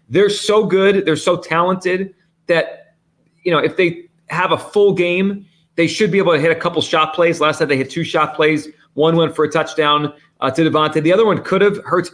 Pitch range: 145-180 Hz